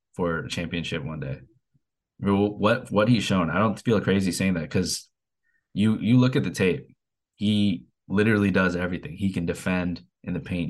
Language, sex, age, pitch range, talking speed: English, male, 20-39, 85-95 Hz, 180 wpm